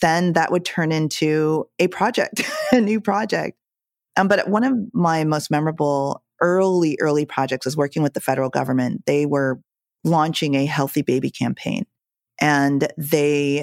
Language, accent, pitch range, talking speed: English, American, 140-160 Hz, 155 wpm